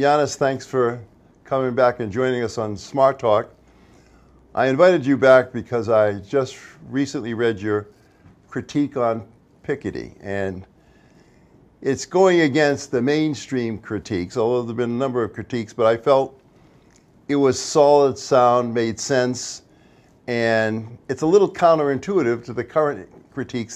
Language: English